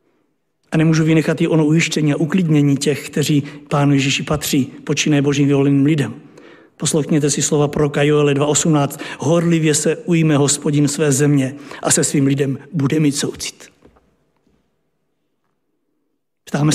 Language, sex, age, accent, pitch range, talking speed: Czech, male, 60-79, native, 140-165 Hz, 135 wpm